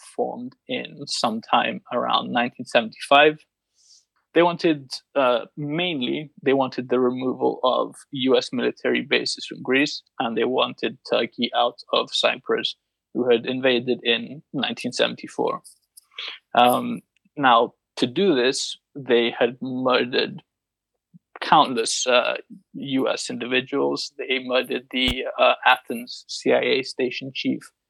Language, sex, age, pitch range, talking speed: English, male, 20-39, 120-140 Hz, 115 wpm